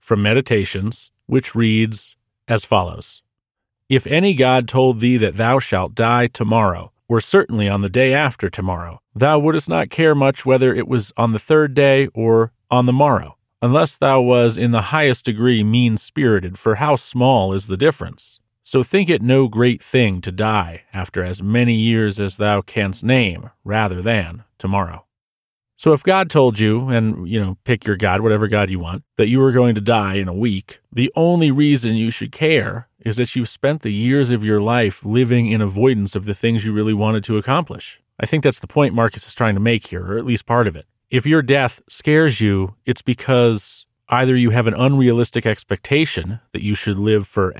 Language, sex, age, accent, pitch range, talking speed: English, male, 40-59, American, 105-125 Hz, 200 wpm